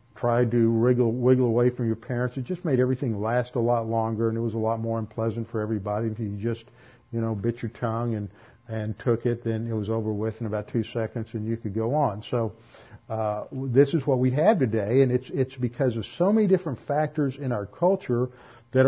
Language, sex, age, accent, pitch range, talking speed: English, male, 50-69, American, 115-150 Hz, 230 wpm